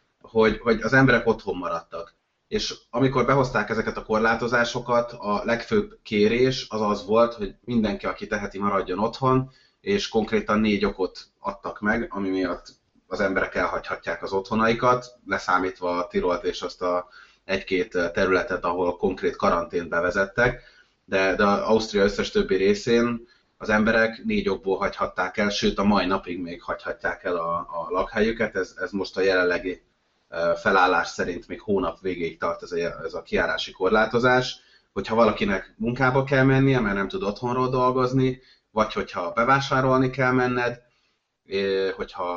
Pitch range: 95-130 Hz